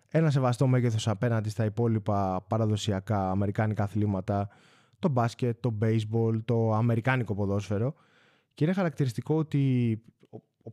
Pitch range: 110-160 Hz